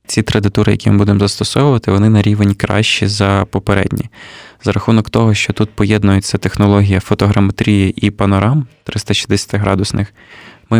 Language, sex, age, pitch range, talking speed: Ukrainian, male, 20-39, 100-110 Hz, 145 wpm